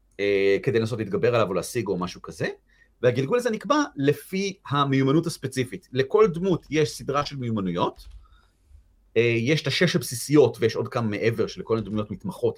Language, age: Hebrew, 30-49